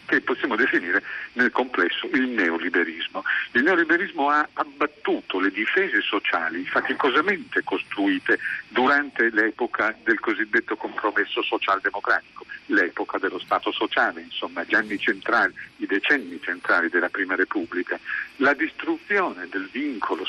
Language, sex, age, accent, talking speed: Italian, male, 50-69, native, 120 wpm